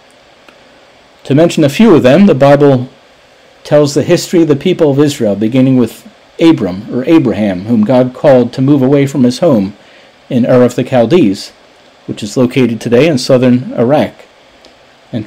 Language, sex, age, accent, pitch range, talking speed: English, male, 50-69, American, 125-160 Hz, 170 wpm